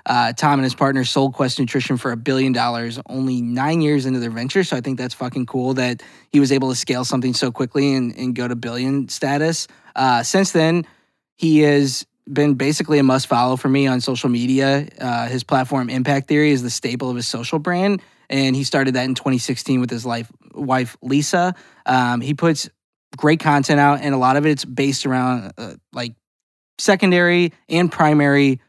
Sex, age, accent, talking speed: male, 20-39, American, 195 wpm